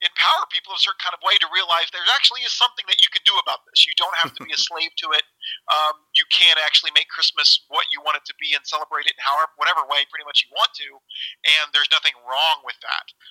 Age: 40-59